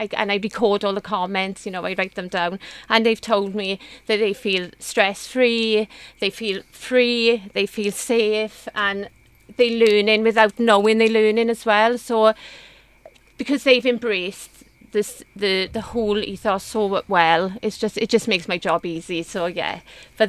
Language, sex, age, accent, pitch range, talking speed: English, female, 30-49, British, 200-230 Hz, 170 wpm